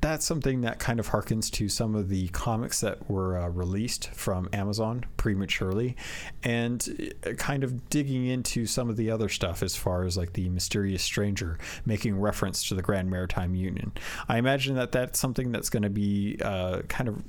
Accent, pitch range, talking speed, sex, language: American, 95-135 Hz, 185 wpm, male, English